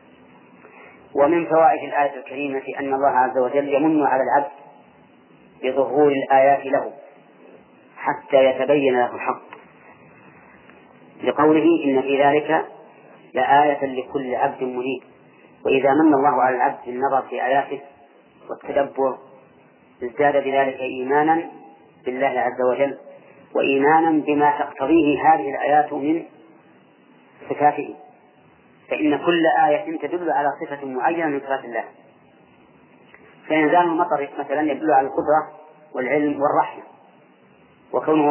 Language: Arabic